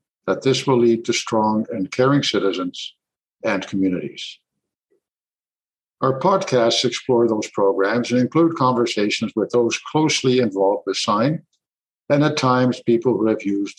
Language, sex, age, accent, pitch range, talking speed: English, male, 60-79, American, 110-135 Hz, 140 wpm